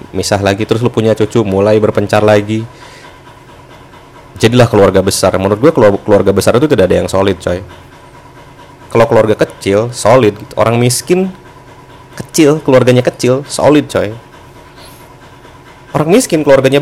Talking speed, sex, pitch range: 130 wpm, male, 95-125 Hz